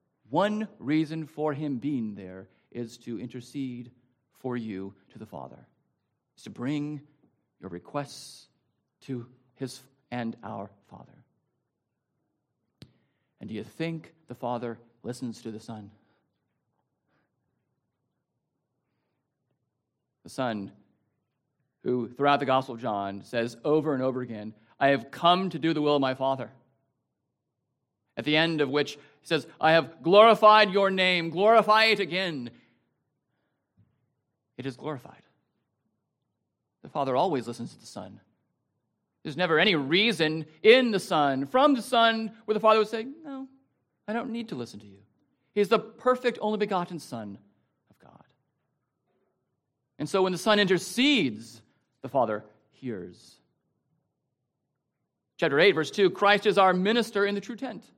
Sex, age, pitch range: male, 40-59, 120-190 Hz